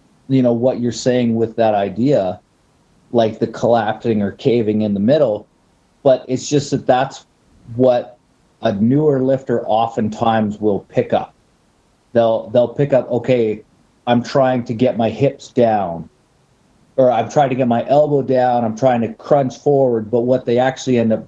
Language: English